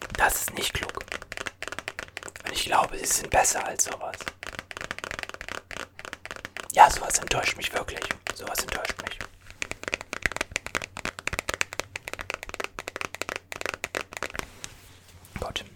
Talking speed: 80 wpm